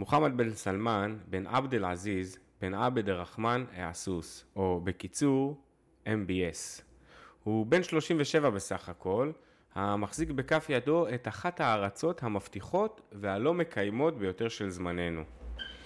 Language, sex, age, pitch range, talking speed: Hebrew, male, 20-39, 95-145 Hz, 115 wpm